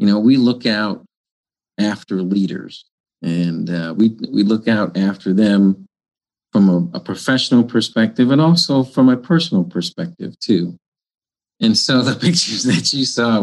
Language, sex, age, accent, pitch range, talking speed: English, male, 50-69, American, 95-120 Hz, 150 wpm